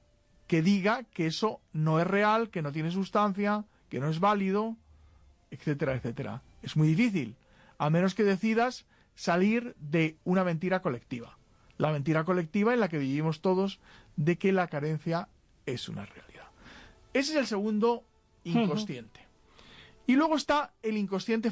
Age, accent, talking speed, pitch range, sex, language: 40-59, Spanish, 150 wpm, 150-205 Hz, male, Spanish